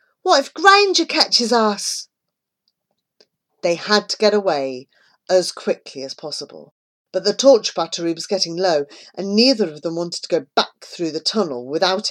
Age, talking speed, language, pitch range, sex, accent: 40-59, 165 wpm, English, 160-215 Hz, female, British